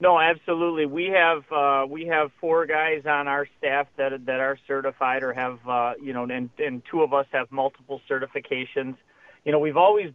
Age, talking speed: 40-59, 195 wpm